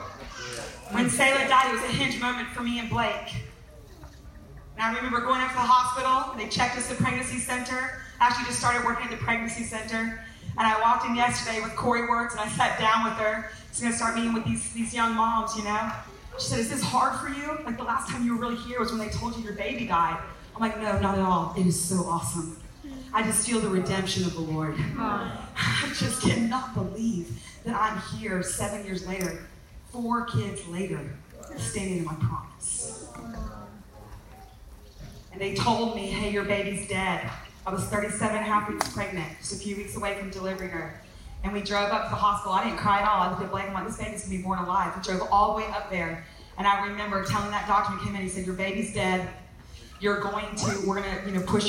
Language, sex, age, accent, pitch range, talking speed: English, female, 30-49, American, 190-230 Hz, 225 wpm